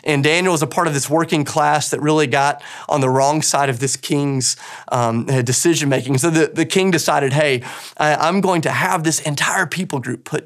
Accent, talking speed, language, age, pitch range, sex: American, 205 wpm, English, 30-49, 135-175 Hz, male